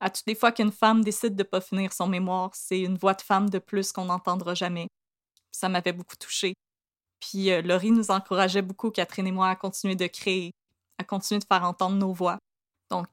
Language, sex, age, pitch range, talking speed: French, female, 20-39, 185-215 Hz, 220 wpm